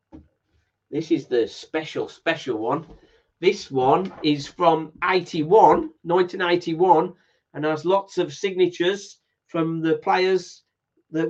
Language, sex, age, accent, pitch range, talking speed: English, male, 40-59, British, 150-185 Hz, 110 wpm